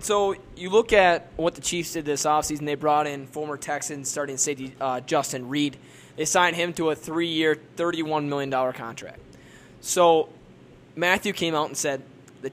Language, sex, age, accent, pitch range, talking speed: English, male, 20-39, American, 140-175 Hz, 170 wpm